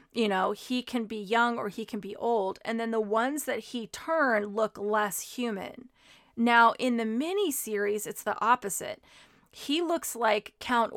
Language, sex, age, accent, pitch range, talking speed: English, female, 30-49, American, 210-245 Hz, 175 wpm